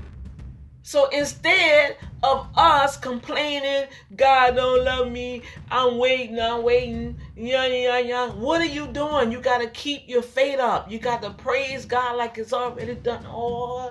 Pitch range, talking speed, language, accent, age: 185-280 Hz, 160 wpm, English, American, 40-59